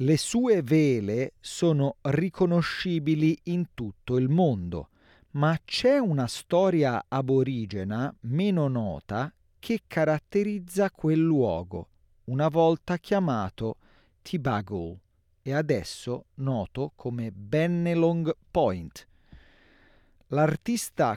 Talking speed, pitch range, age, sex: 90 wpm, 120-180 Hz, 40-59, male